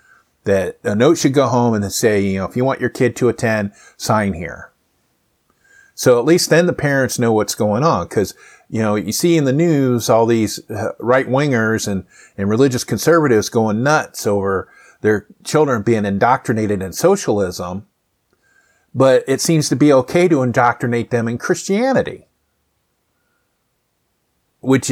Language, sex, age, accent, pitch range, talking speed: English, male, 50-69, American, 110-145 Hz, 165 wpm